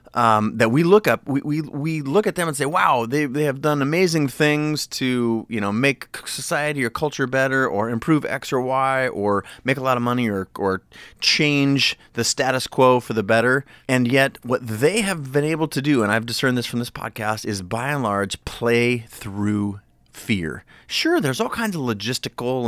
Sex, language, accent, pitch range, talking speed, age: male, English, American, 100-135 Hz, 205 wpm, 30-49